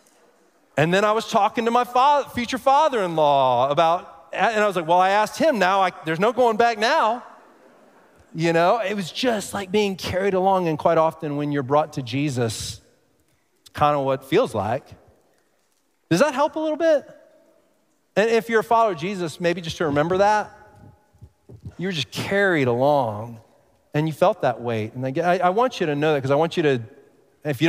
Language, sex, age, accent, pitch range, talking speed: English, male, 30-49, American, 125-180 Hz, 195 wpm